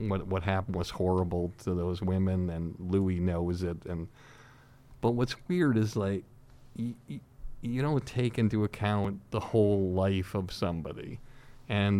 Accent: American